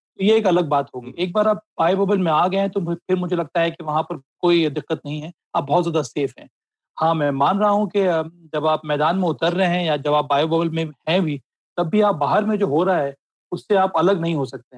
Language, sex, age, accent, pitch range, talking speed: Hindi, male, 30-49, native, 150-180 Hz, 265 wpm